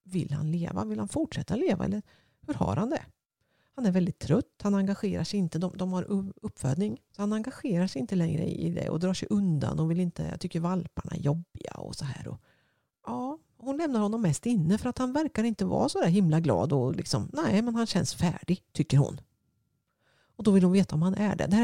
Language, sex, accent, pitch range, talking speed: Swedish, female, native, 165-220 Hz, 235 wpm